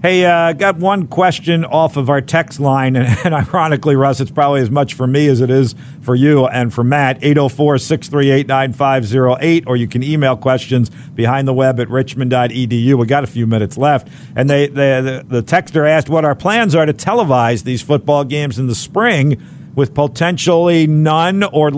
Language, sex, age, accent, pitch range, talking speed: English, male, 50-69, American, 125-155 Hz, 190 wpm